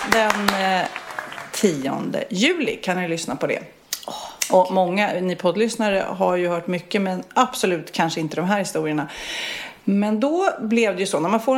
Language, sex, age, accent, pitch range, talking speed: Swedish, female, 30-49, native, 175-225 Hz, 165 wpm